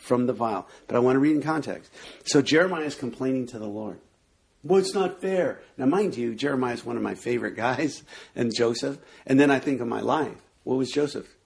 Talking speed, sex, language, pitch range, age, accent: 225 wpm, male, English, 135-215 Hz, 50-69, American